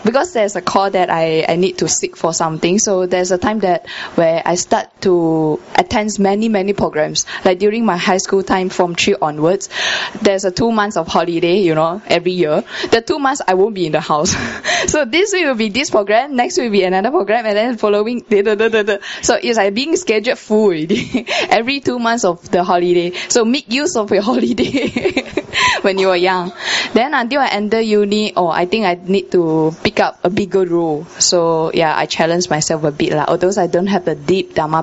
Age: 10-29